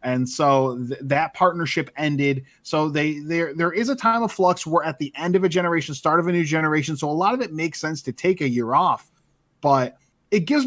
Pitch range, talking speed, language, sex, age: 140-185 Hz, 230 wpm, English, male, 20-39